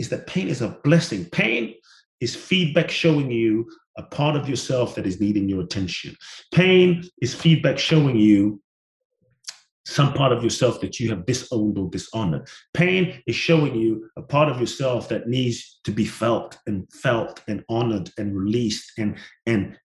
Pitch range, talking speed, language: 110-160 Hz, 170 wpm, English